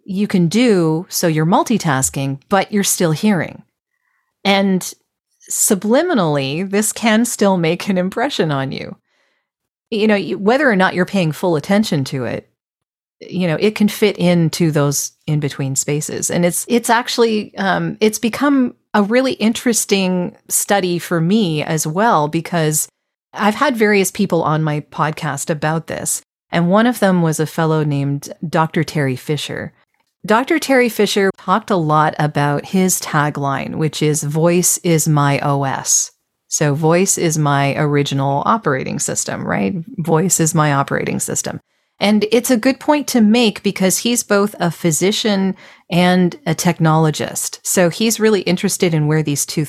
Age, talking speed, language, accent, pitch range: 40-59, 155 wpm, English, American, 155-210 Hz